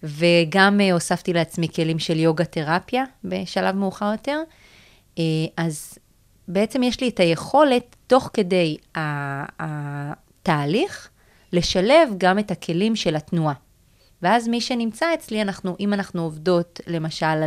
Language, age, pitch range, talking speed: Hebrew, 30-49, 160-195 Hz, 115 wpm